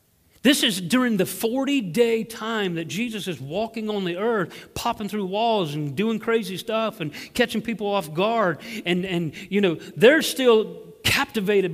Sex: male